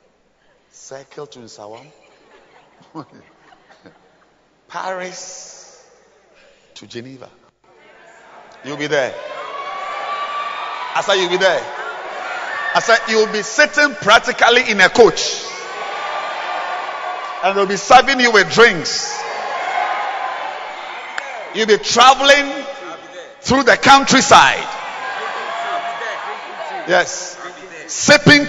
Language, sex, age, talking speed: English, male, 50-69, 80 wpm